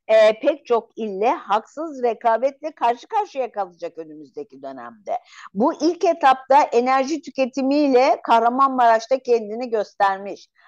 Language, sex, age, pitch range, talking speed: Turkish, female, 50-69, 210-280 Hz, 105 wpm